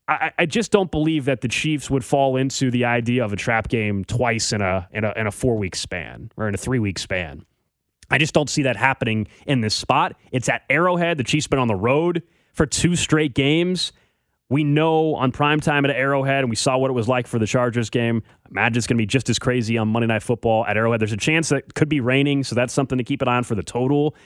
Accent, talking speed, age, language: American, 255 wpm, 20-39, English